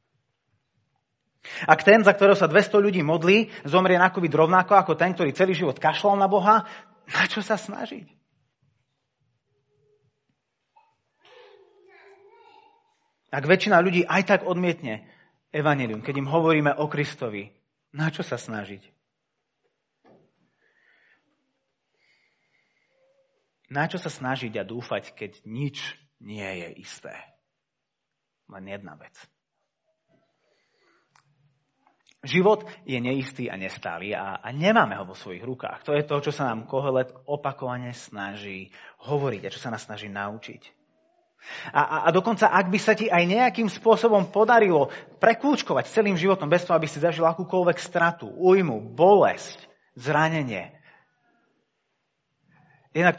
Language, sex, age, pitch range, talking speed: Slovak, male, 30-49, 135-205 Hz, 120 wpm